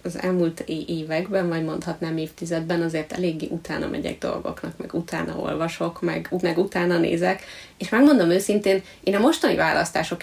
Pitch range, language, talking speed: 170-220 Hz, Hungarian, 145 wpm